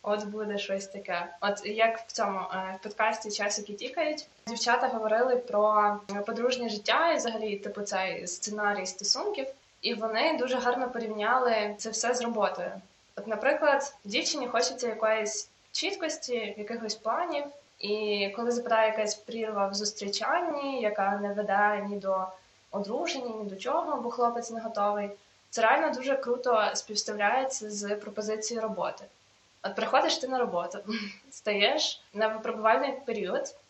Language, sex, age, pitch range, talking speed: Ukrainian, female, 20-39, 210-260 Hz, 135 wpm